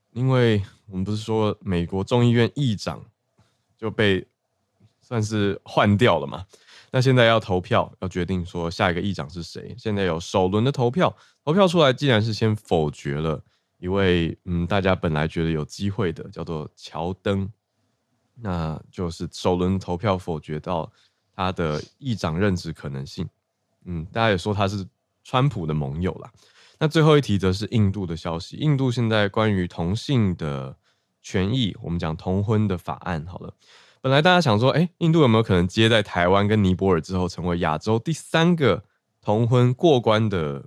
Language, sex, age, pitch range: Chinese, male, 20-39, 85-115 Hz